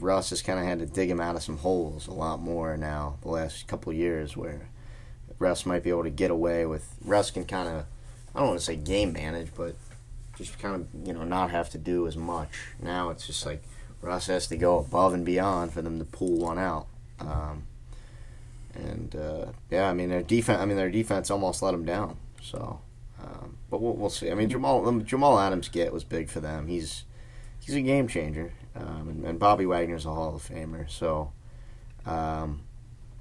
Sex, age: male, 30-49